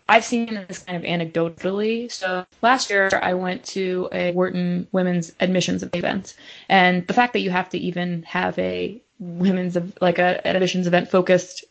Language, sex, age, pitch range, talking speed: English, female, 20-39, 170-195 Hz, 170 wpm